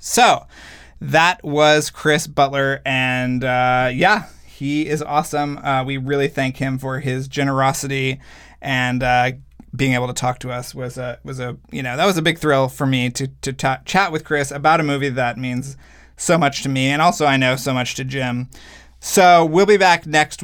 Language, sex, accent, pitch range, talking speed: English, male, American, 130-150 Hz, 200 wpm